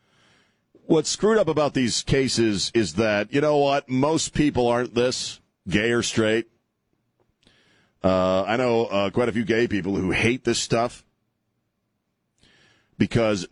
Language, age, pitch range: English, 40-59, 100-130 Hz